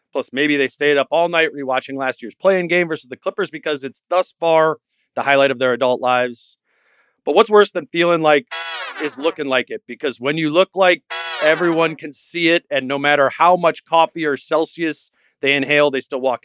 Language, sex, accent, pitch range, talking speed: English, male, American, 130-160 Hz, 210 wpm